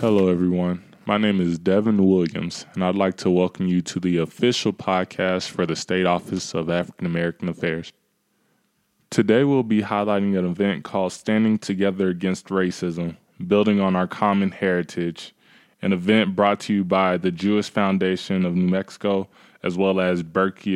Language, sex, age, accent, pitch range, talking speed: English, male, 20-39, American, 90-100 Hz, 165 wpm